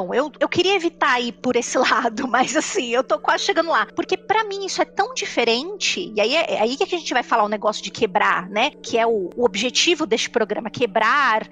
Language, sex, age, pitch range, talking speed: Portuguese, female, 20-39, 225-340 Hz, 235 wpm